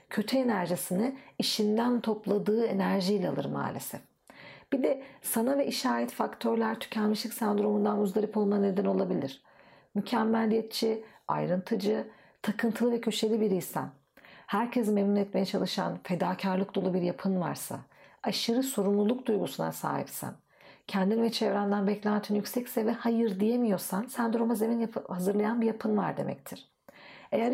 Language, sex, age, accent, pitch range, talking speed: Turkish, female, 50-69, native, 195-235 Hz, 120 wpm